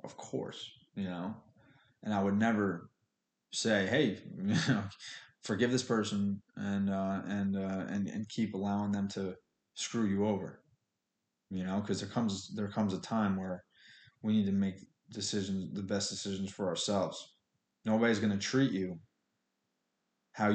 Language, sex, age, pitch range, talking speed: English, male, 20-39, 95-110 Hz, 160 wpm